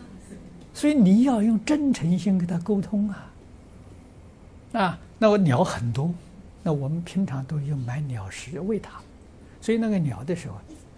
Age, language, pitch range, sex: 60-79, Chinese, 95-150 Hz, male